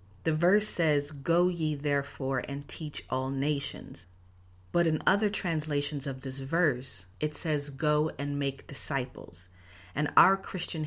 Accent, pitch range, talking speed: American, 120-155 Hz, 145 wpm